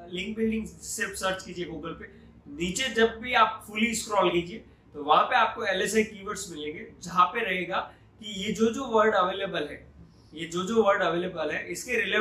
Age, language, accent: 20-39, Hindi, native